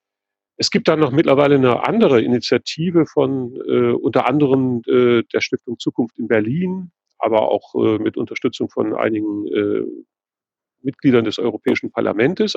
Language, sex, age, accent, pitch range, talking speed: English, male, 40-59, German, 120-155 Hz, 145 wpm